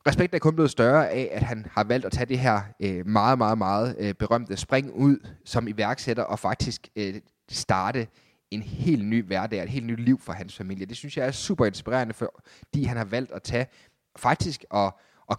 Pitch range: 105-135 Hz